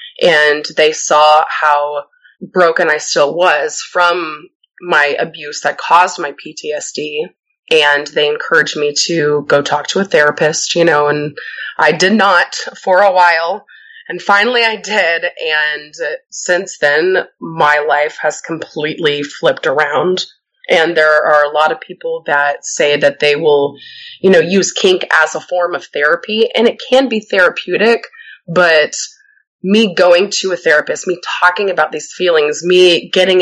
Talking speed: 155 wpm